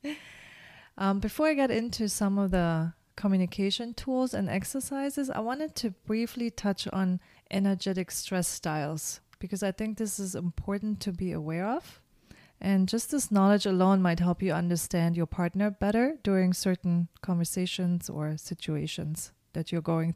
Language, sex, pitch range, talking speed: English, female, 170-210 Hz, 150 wpm